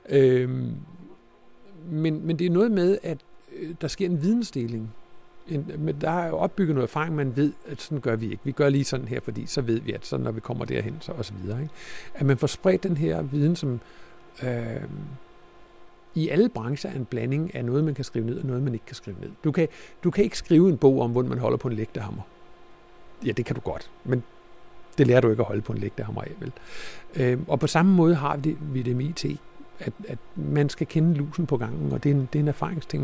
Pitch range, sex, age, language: 125-170 Hz, male, 60-79, Danish